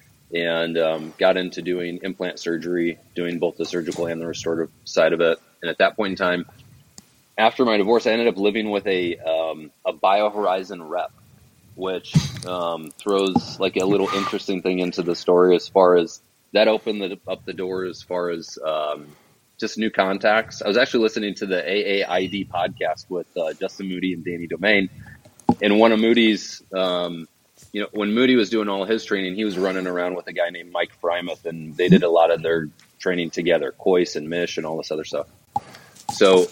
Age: 30-49